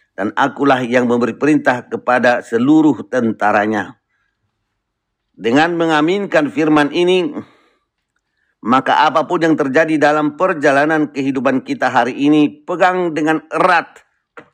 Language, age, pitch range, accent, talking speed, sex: Indonesian, 50-69, 120-160 Hz, native, 105 wpm, male